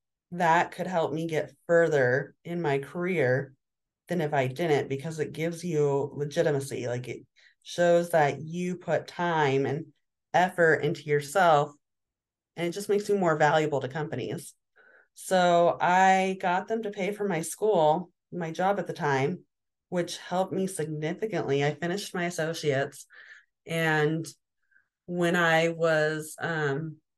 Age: 30-49